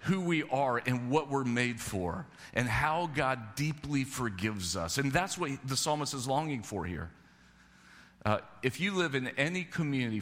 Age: 40-59